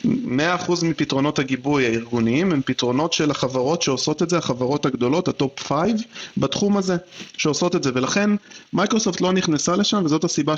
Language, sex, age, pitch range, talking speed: Hebrew, male, 40-59, 130-180 Hz, 160 wpm